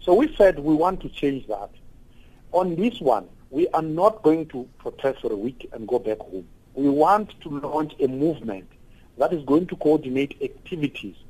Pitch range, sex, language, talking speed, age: 130-180 Hz, male, English, 190 wpm, 50-69